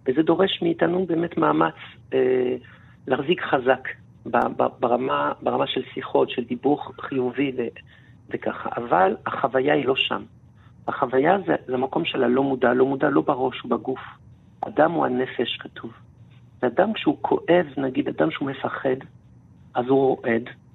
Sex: male